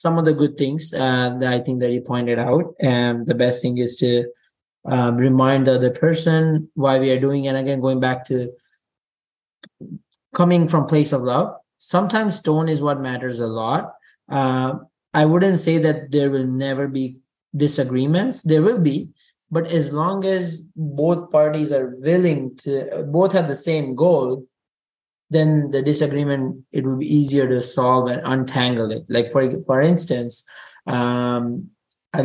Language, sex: English, male